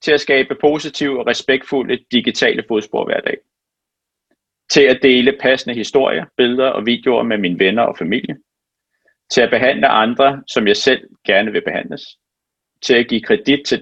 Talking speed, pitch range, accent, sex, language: 165 wpm, 120-145 Hz, native, male, Danish